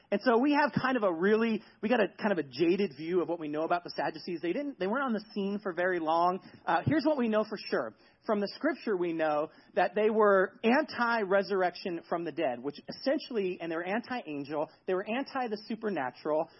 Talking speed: 230 wpm